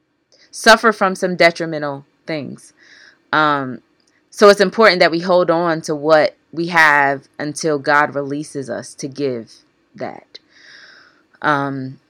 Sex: female